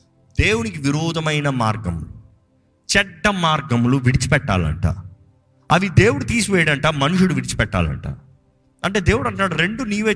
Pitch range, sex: 125-180 Hz, male